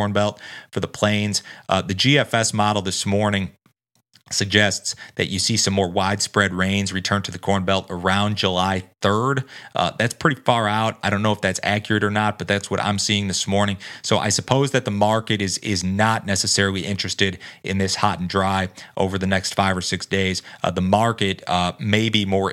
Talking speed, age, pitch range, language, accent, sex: 205 wpm, 30-49, 95-105 Hz, English, American, male